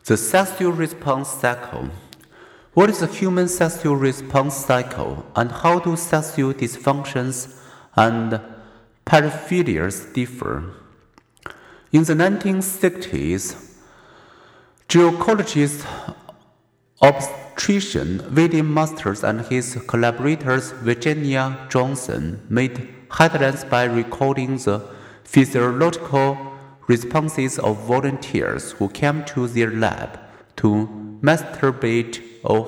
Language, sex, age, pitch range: Chinese, male, 50-69, 115-150 Hz